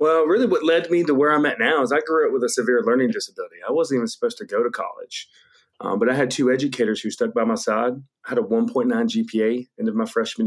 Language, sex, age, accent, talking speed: English, male, 30-49, American, 270 wpm